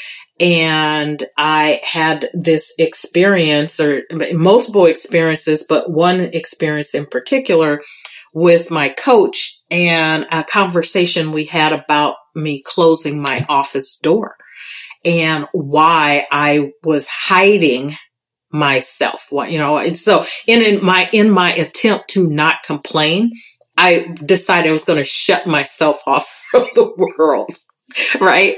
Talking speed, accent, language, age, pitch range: 125 wpm, American, English, 40-59, 150-185 Hz